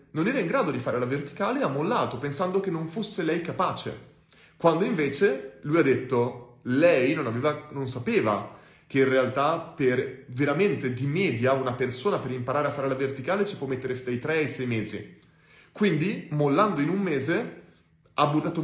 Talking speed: 185 wpm